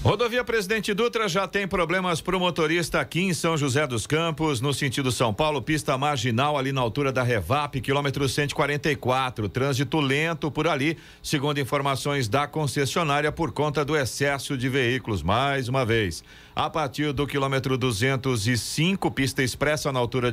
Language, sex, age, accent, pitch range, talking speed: Portuguese, male, 50-69, Brazilian, 130-165 Hz, 160 wpm